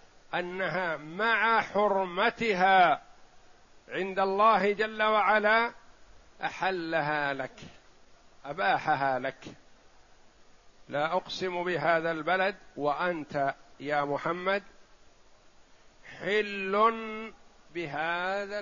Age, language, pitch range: 50-69, Arabic, 155-200 Hz